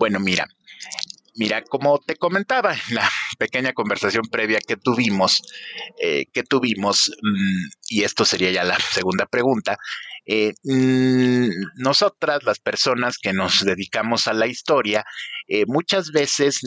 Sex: male